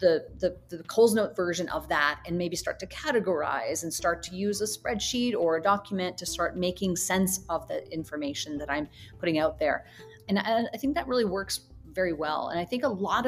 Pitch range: 165-205 Hz